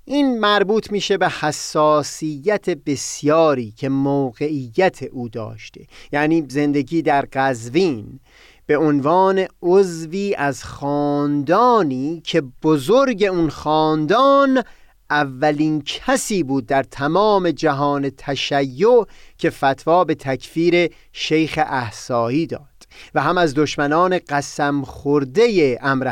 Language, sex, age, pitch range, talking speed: Persian, male, 30-49, 135-175 Hz, 100 wpm